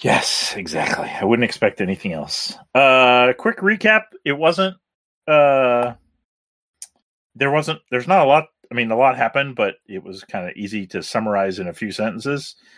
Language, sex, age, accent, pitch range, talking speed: English, male, 30-49, American, 110-140 Hz, 170 wpm